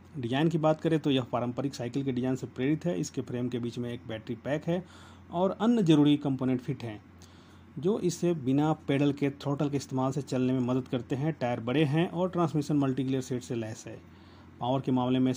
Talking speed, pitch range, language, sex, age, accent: 220 wpm, 120-150 Hz, Hindi, male, 30-49, native